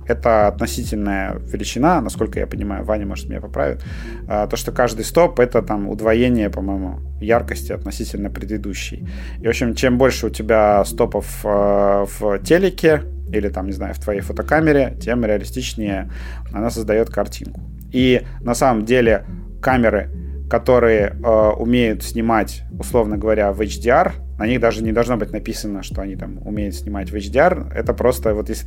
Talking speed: 160 wpm